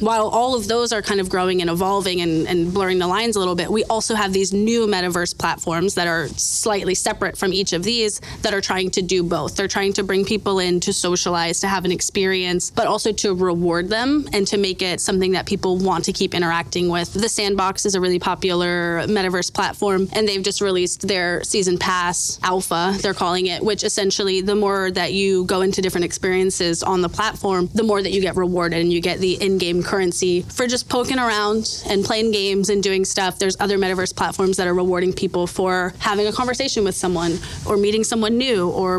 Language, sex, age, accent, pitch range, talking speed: English, female, 20-39, American, 180-210 Hz, 220 wpm